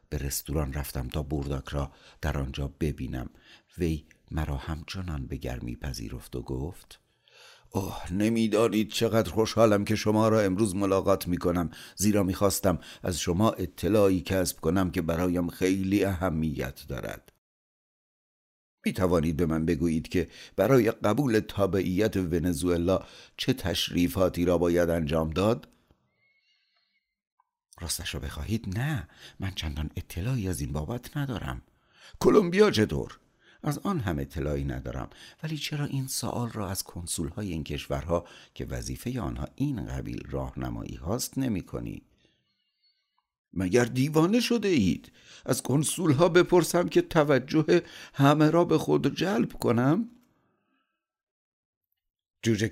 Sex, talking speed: male, 125 wpm